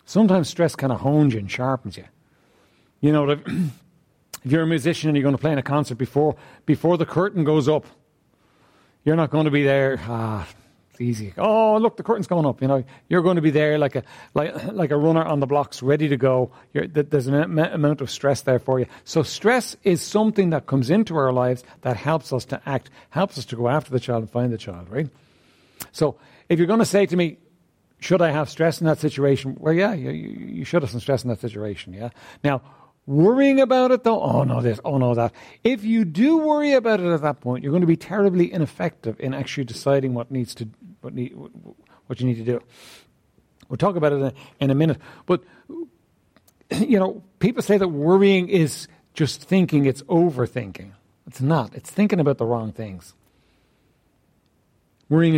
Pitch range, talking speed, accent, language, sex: 125-175 Hz, 210 wpm, Irish, English, male